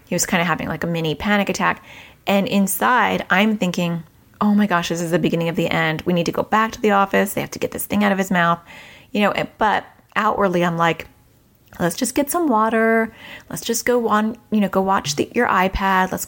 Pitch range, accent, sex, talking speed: 170-210 Hz, American, female, 240 wpm